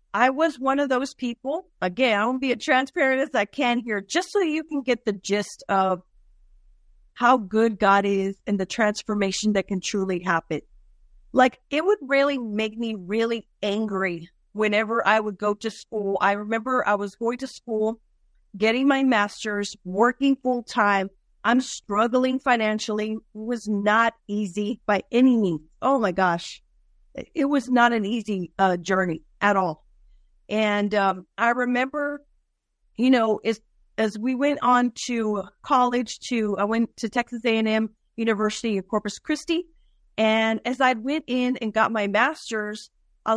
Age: 40-59